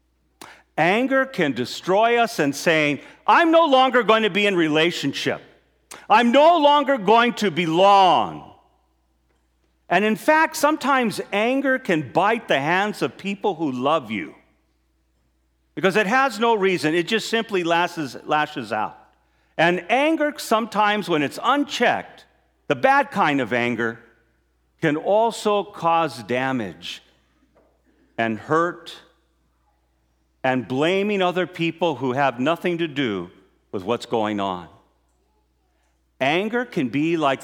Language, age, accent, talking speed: English, 50-69, American, 125 wpm